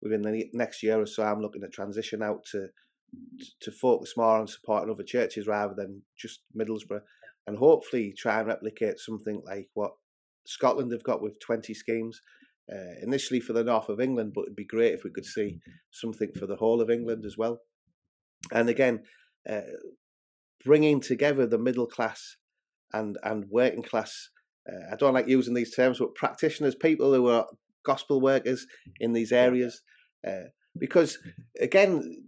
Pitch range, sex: 115-145 Hz, male